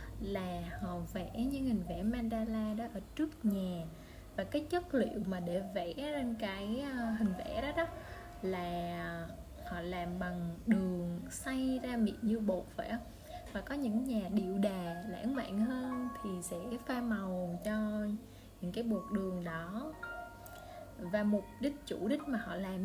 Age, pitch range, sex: 20-39, 185-235 Hz, female